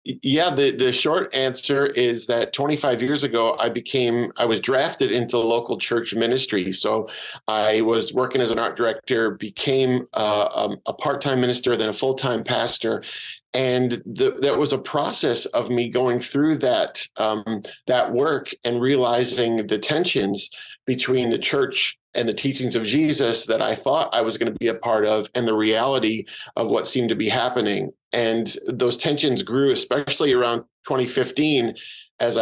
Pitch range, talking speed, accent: 115-130 Hz, 170 wpm, American